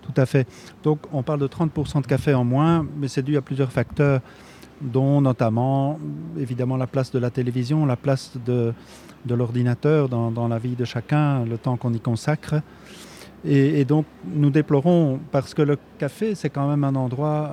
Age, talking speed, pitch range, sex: 40-59, 190 wpm, 120-150 Hz, male